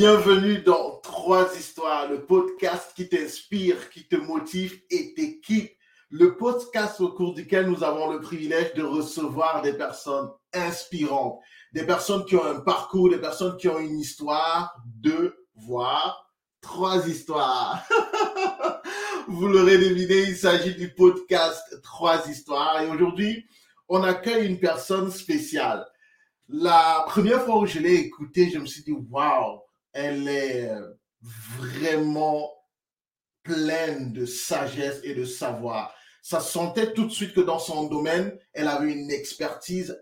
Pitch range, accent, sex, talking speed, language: 150-195 Hz, French, male, 140 wpm, French